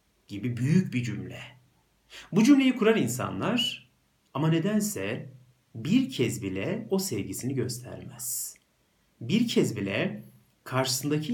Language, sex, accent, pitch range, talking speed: Turkish, male, native, 100-165 Hz, 105 wpm